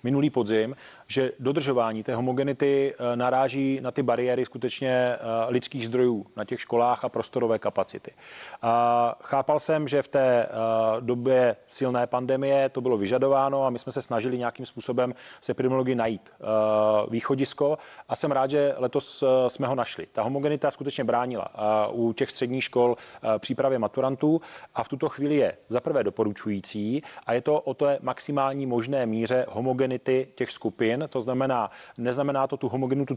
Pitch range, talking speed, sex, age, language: 120-135 Hz, 155 wpm, male, 30-49, Czech